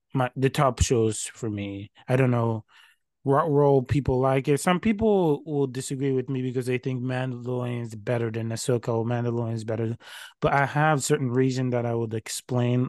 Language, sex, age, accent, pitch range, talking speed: English, male, 20-39, American, 115-135 Hz, 190 wpm